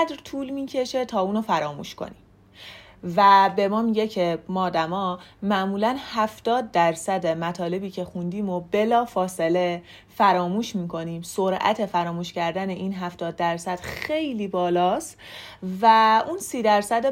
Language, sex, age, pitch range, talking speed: Persian, female, 30-49, 180-220 Hz, 125 wpm